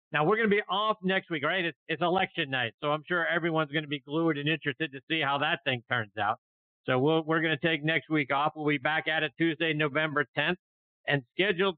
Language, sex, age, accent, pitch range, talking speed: English, male, 50-69, American, 130-160 Hz, 250 wpm